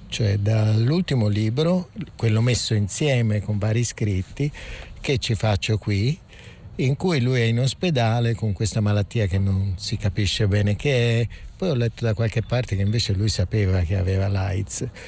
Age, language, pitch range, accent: 50-69, Italian, 105-130 Hz, native